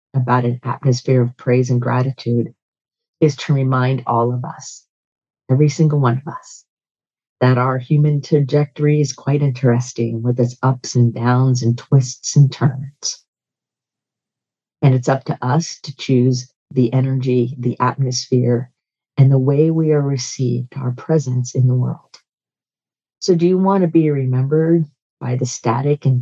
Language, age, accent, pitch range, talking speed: English, 50-69, American, 125-150 Hz, 155 wpm